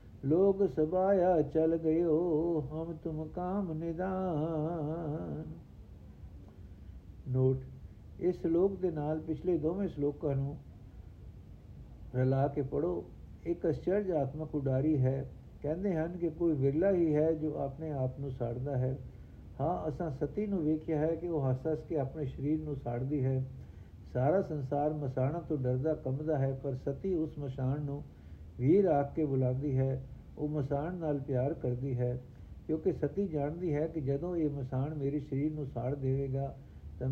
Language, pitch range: Punjabi, 130-160 Hz